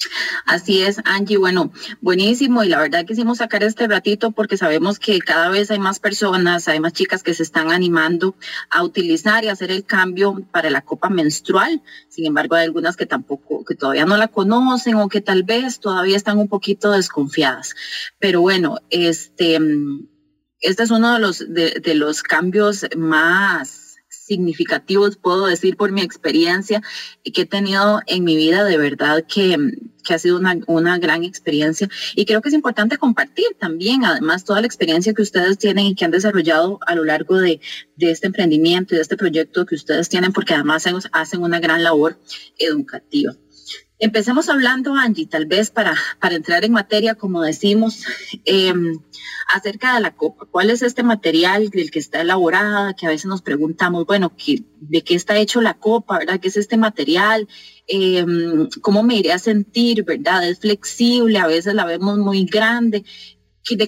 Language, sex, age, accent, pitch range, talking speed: English, female, 20-39, Colombian, 170-215 Hz, 180 wpm